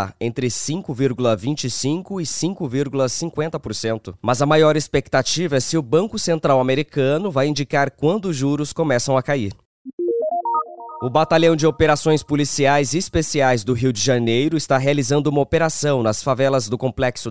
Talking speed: 140 wpm